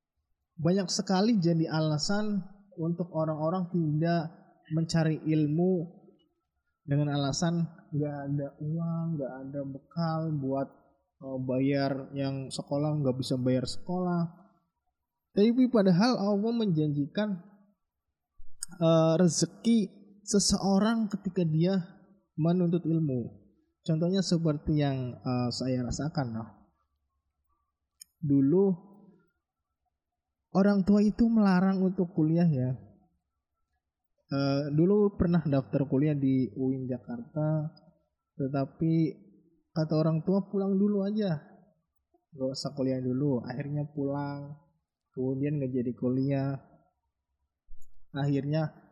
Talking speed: 90 wpm